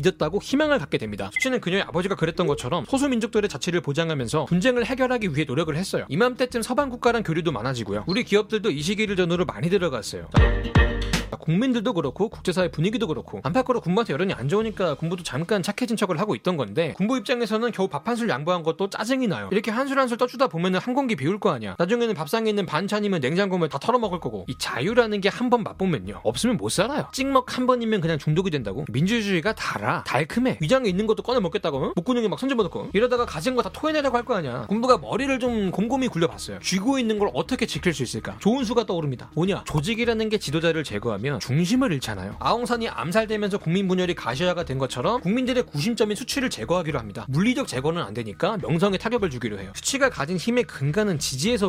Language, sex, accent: Korean, male, native